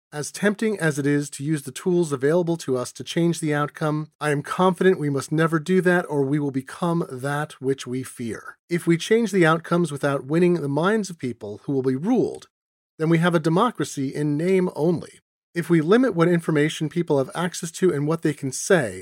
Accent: American